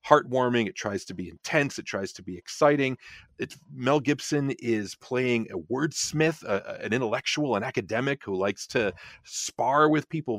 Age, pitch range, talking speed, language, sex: 40-59, 100-150 Hz, 160 wpm, English, male